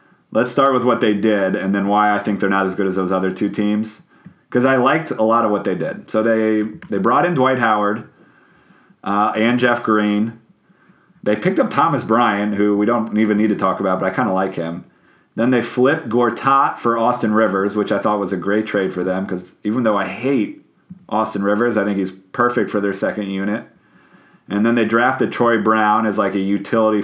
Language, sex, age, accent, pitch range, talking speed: English, male, 30-49, American, 100-115 Hz, 220 wpm